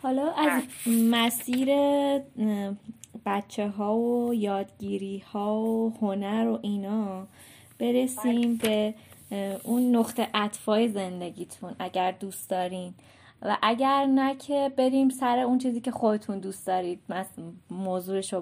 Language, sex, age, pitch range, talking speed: Persian, female, 20-39, 200-245 Hz, 115 wpm